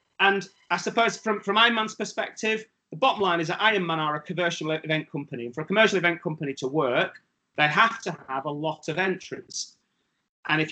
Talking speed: 200 wpm